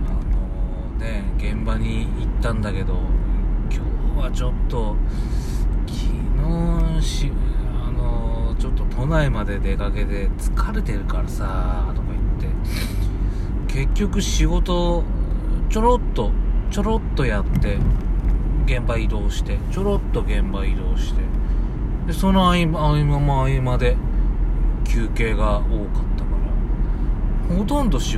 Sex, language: male, Japanese